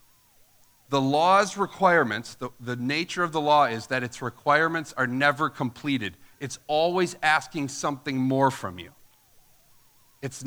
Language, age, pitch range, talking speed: English, 40-59, 120-155 Hz, 140 wpm